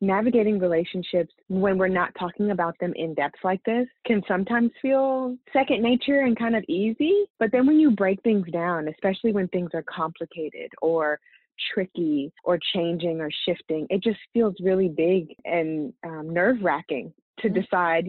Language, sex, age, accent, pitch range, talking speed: English, female, 20-39, American, 175-225 Hz, 165 wpm